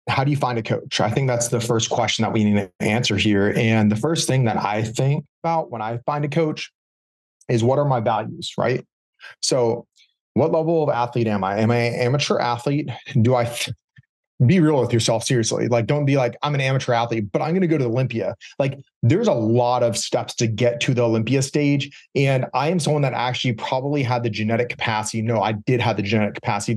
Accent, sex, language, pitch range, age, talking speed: American, male, English, 115-145 Hz, 30-49, 230 wpm